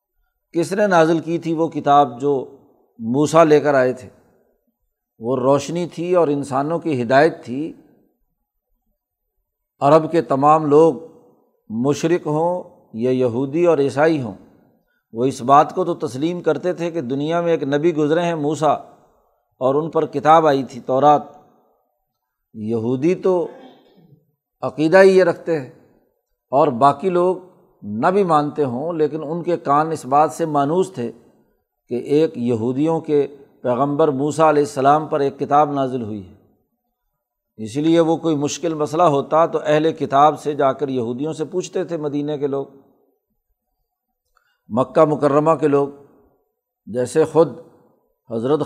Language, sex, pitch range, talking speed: Urdu, male, 140-165 Hz, 145 wpm